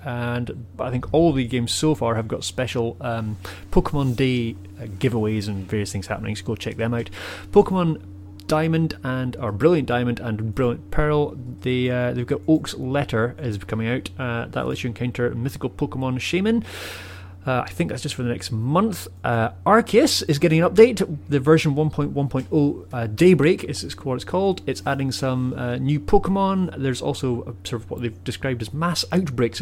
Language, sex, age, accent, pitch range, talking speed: English, male, 30-49, British, 115-155 Hz, 185 wpm